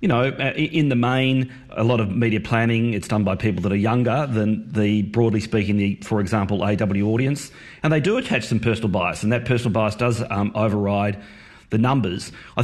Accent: Australian